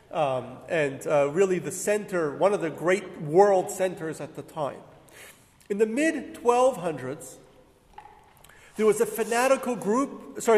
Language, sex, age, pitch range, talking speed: English, male, 40-59, 155-210 Hz, 135 wpm